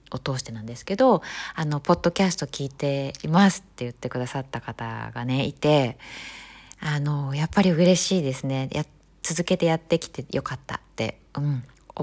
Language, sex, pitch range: Japanese, female, 130-190 Hz